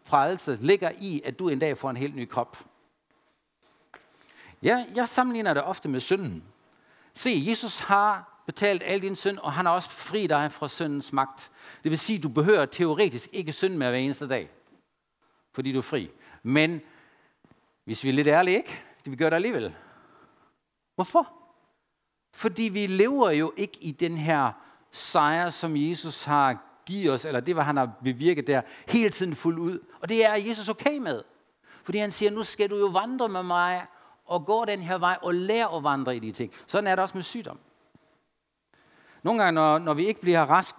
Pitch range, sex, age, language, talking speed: 150-205 Hz, male, 60-79, Danish, 195 wpm